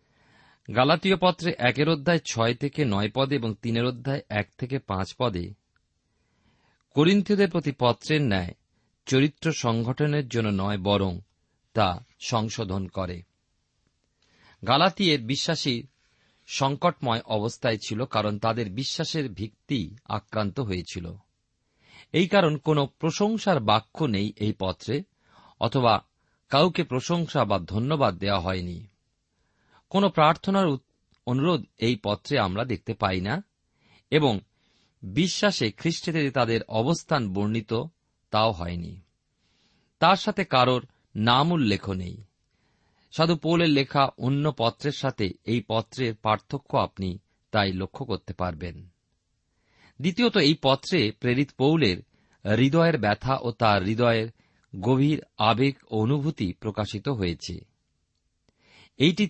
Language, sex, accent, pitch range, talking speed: Bengali, male, native, 100-145 Hz, 105 wpm